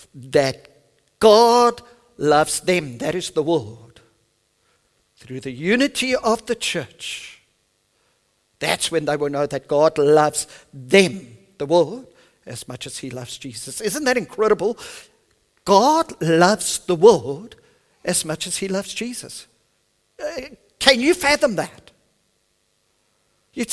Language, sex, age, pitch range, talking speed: English, male, 50-69, 135-195 Hz, 125 wpm